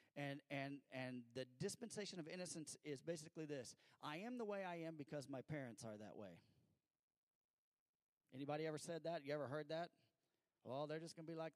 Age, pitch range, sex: 40-59, 145-180 Hz, male